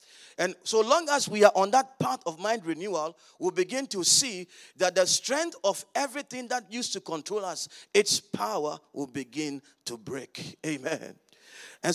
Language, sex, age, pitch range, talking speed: English, male, 40-59, 175-255 Hz, 170 wpm